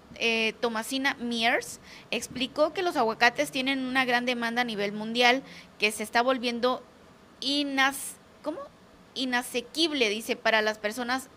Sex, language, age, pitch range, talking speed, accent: female, Spanish, 20-39, 220-265 Hz, 130 wpm, Mexican